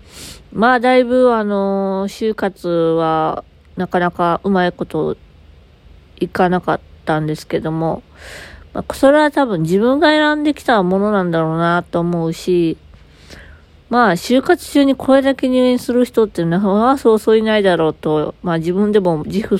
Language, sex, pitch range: Japanese, female, 170-250 Hz